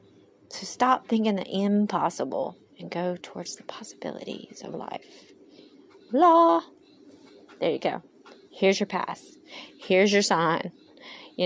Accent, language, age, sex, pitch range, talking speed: American, English, 30-49, female, 185-270 Hz, 120 wpm